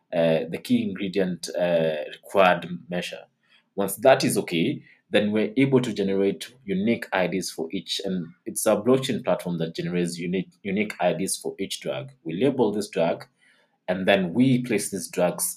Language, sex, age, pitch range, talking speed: English, male, 30-49, 85-115 Hz, 165 wpm